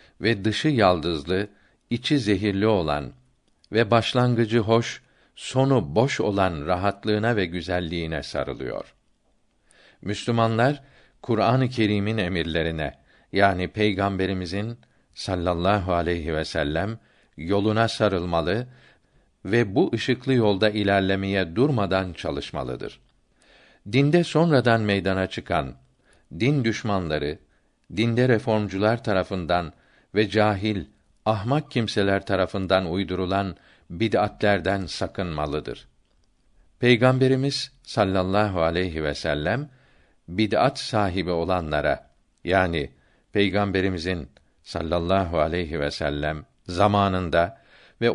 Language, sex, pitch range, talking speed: Turkish, male, 85-115 Hz, 85 wpm